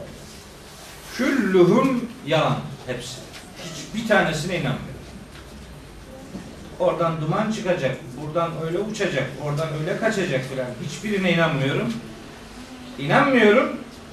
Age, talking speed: 40-59, 85 wpm